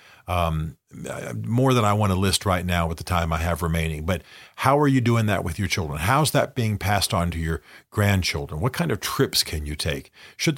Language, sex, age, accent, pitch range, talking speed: English, male, 50-69, American, 85-110 Hz, 225 wpm